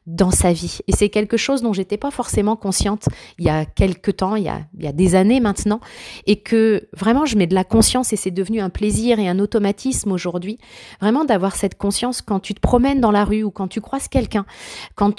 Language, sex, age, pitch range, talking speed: French, female, 30-49, 195-230 Hz, 235 wpm